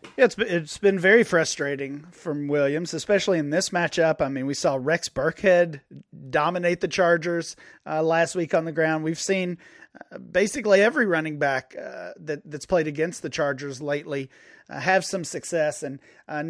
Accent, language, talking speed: American, English, 175 wpm